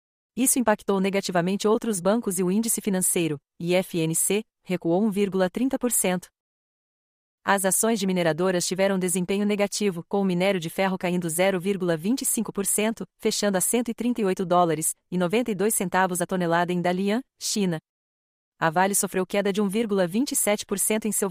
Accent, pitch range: Brazilian, 180-215 Hz